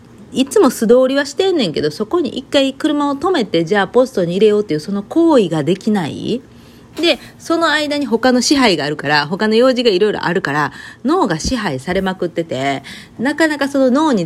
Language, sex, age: Japanese, female, 40-59